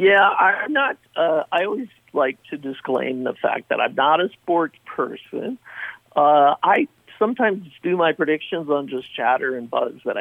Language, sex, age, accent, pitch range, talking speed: English, male, 50-69, American, 135-175 Hz, 170 wpm